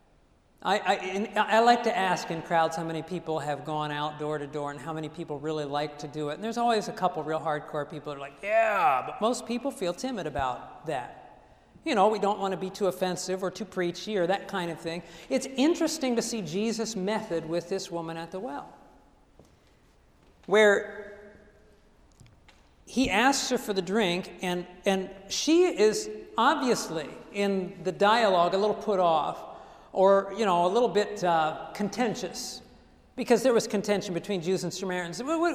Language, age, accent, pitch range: English, 50-69, American, 175-235 Hz